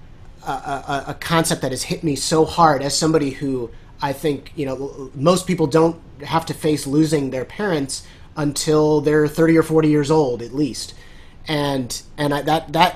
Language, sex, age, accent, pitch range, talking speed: English, male, 30-49, American, 130-155 Hz, 185 wpm